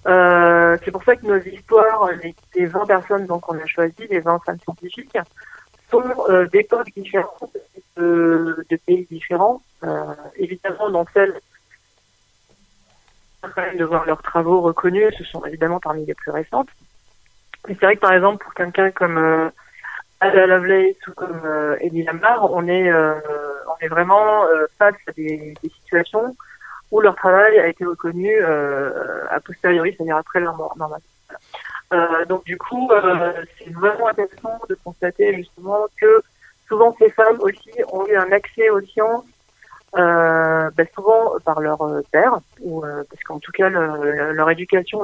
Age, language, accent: 50-69, French, French